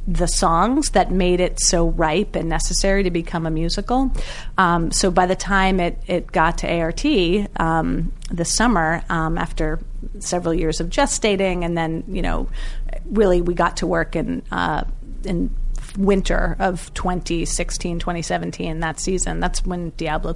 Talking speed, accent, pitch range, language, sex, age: 160 wpm, American, 160-185 Hz, English, female, 30-49